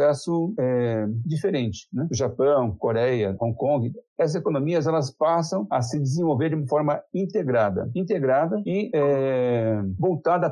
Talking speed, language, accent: 130 wpm, Portuguese, Brazilian